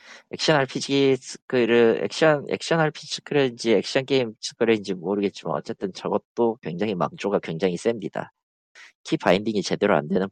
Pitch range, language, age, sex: 90-155 Hz, Korean, 40-59, male